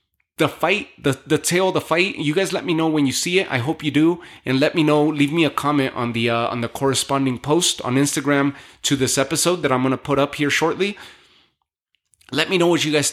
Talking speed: 240 wpm